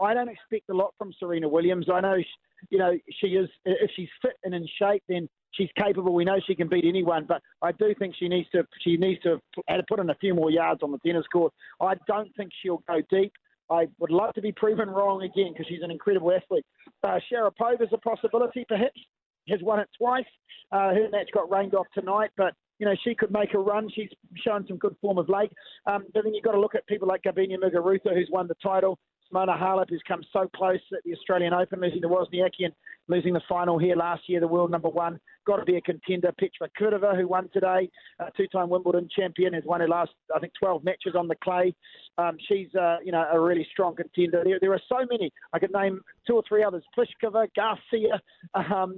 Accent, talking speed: Australian, 230 wpm